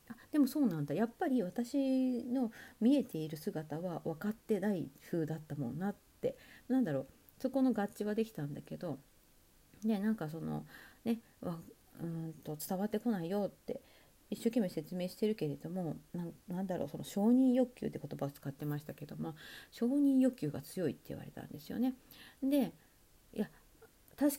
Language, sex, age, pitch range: Japanese, female, 40-59, 160-250 Hz